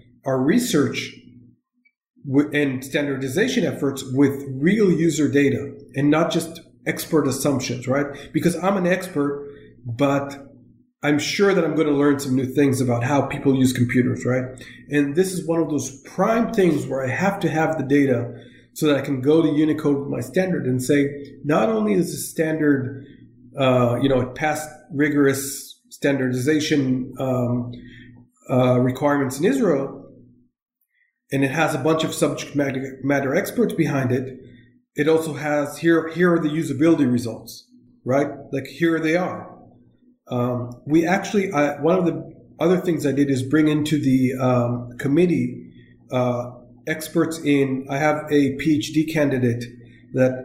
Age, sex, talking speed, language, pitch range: 50-69, male, 155 wpm, English, 130-155 Hz